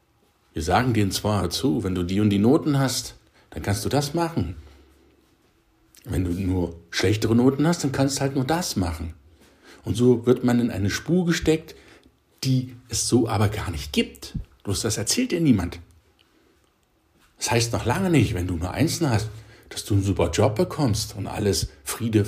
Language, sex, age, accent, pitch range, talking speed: German, male, 60-79, German, 95-130 Hz, 185 wpm